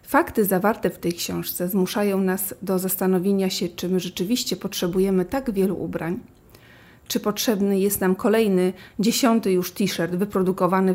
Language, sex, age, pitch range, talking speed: Polish, female, 40-59, 180-215 Hz, 140 wpm